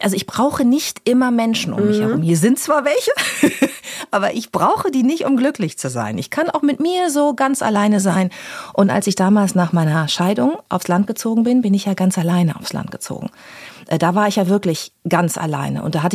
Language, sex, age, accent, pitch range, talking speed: German, female, 40-59, German, 175-225 Hz, 225 wpm